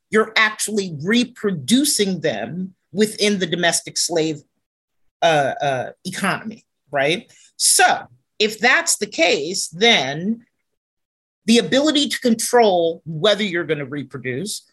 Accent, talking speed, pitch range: American, 105 wpm, 175-235 Hz